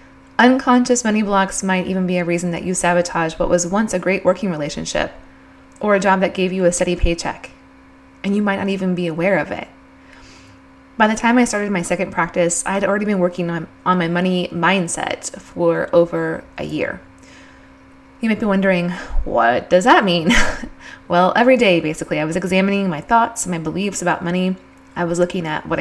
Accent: American